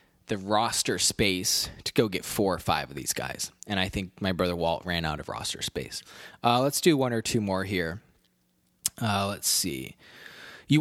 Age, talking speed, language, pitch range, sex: 20-39, 195 wpm, English, 105-150 Hz, male